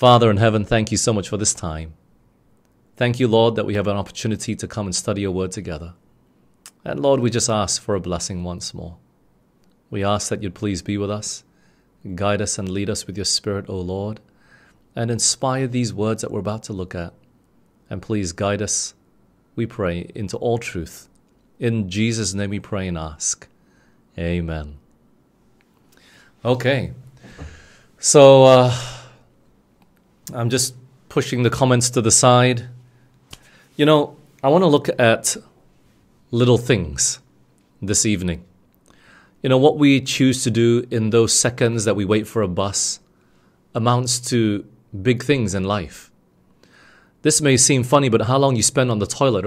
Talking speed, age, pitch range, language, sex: 165 wpm, 30-49, 100-125 Hz, English, male